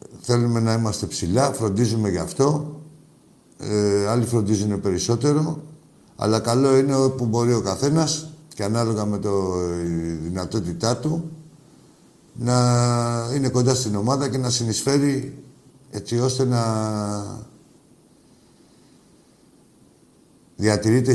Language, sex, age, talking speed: Greek, male, 50-69, 100 wpm